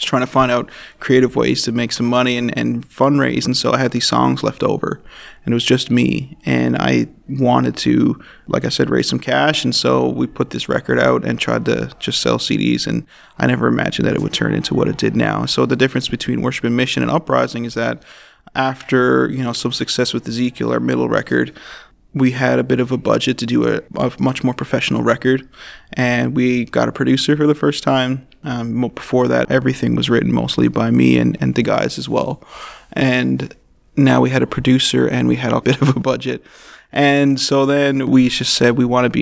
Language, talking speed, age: English, 225 wpm, 20-39